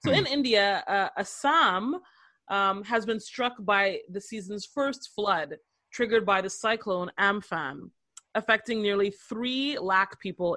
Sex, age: female, 30-49